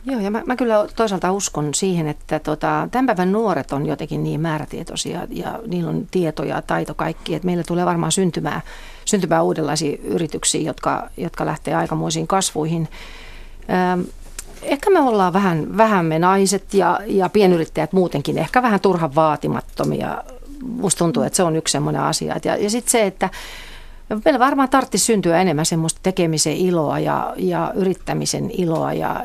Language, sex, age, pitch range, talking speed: Finnish, female, 40-59, 160-200 Hz, 160 wpm